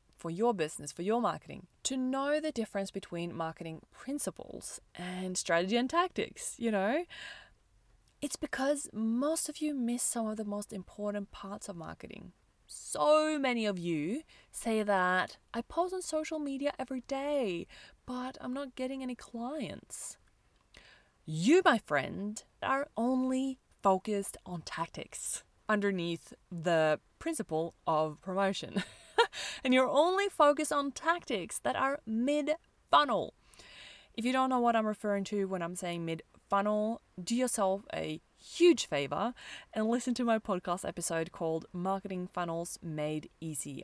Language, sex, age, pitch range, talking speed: English, female, 20-39, 180-275 Hz, 140 wpm